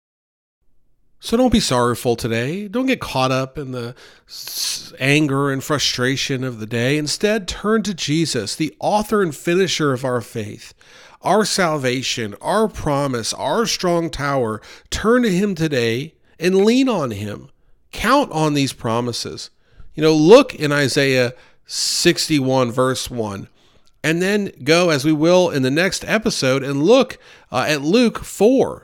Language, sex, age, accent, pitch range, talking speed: English, male, 40-59, American, 125-175 Hz, 150 wpm